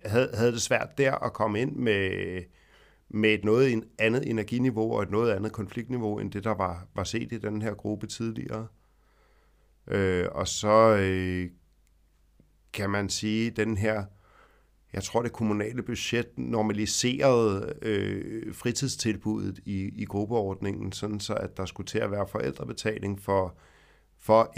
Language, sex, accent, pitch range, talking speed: Danish, male, native, 95-110 Hz, 150 wpm